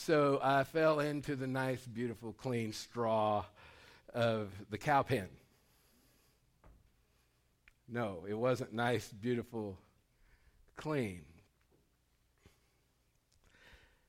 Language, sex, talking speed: English, male, 80 wpm